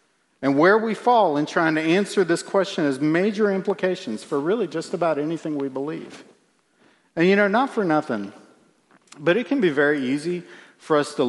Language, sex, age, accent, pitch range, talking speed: English, male, 50-69, American, 140-180 Hz, 185 wpm